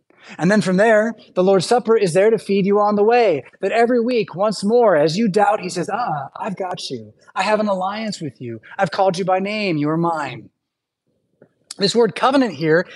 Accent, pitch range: American, 165-230 Hz